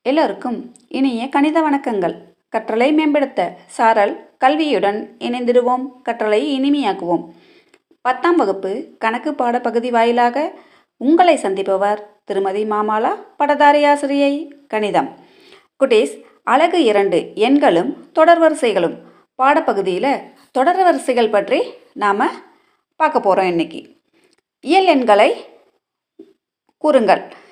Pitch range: 195-315 Hz